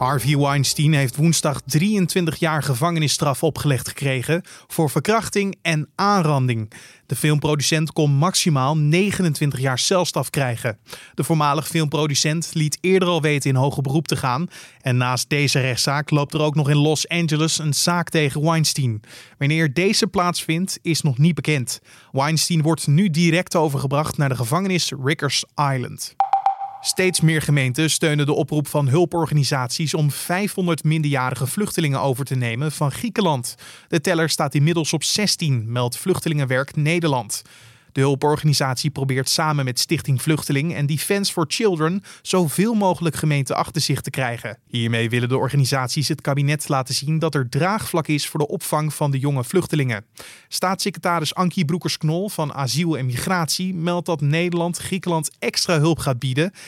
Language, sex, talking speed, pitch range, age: Dutch, male, 150 wpm, 140-170 Hz, 20-39